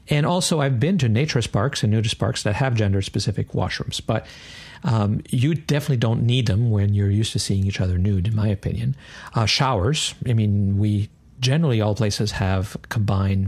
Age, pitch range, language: 50-69, 105-140 Hz, English